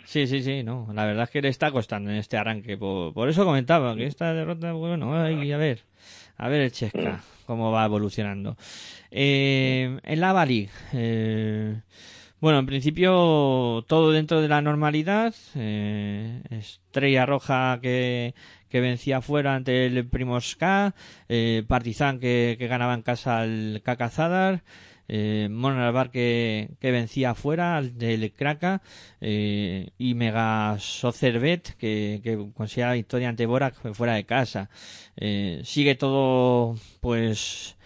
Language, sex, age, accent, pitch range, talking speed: Spanish, male, 20-39, Spanish, 110-135 Hz, 140 wpm